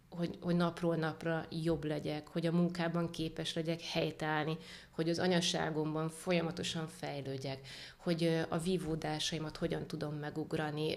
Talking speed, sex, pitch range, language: 125 wpm, female, 160-175 Hz, Hungarian